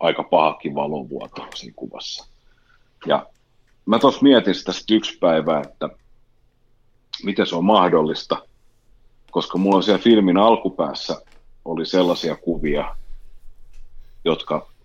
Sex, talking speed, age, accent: male, 105 wpm, 40-59, native